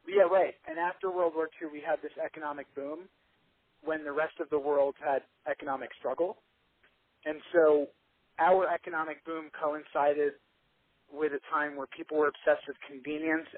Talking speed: 160 wpm